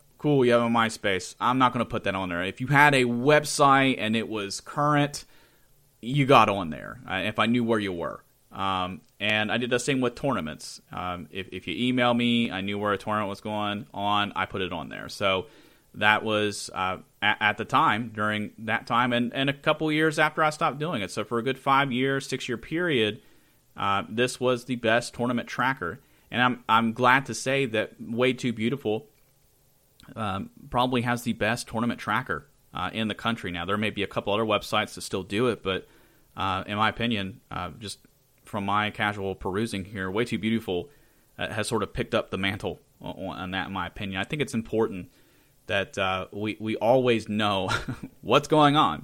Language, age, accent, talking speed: English, 30-49, American, 205 wpm